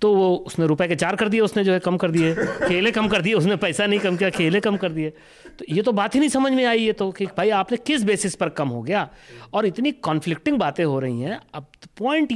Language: English